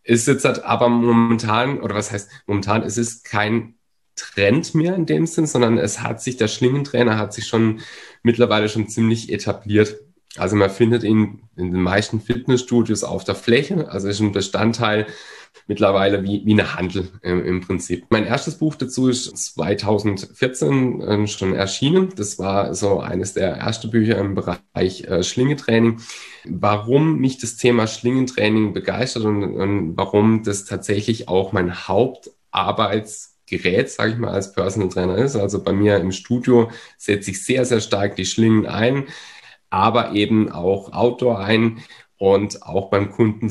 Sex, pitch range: male, 100-120 Hz